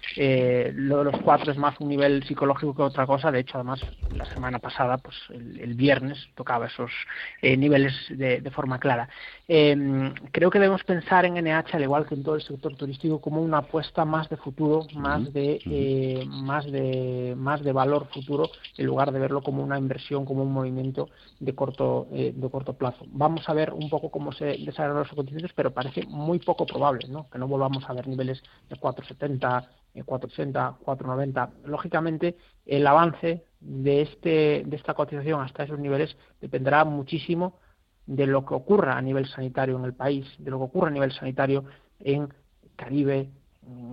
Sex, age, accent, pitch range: male, 40-59, Spanish, 135-150 Hz